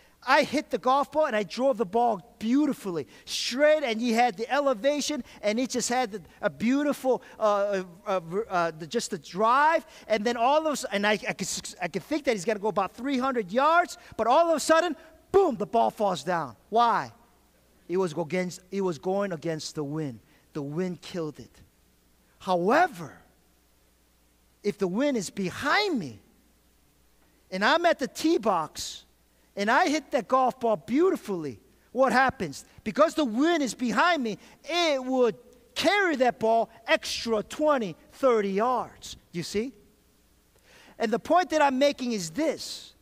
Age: 40-59